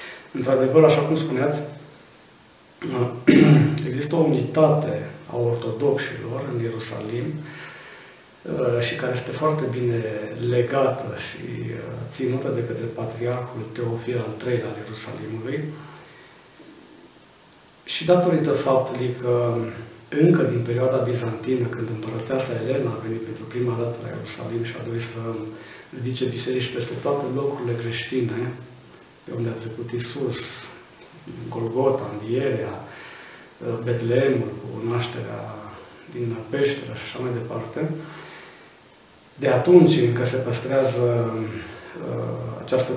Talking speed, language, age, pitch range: 105 wpm, Romanian, 40-59, 115-135 Hz